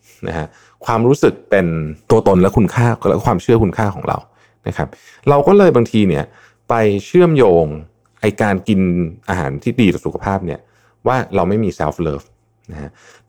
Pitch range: 90-115 Hz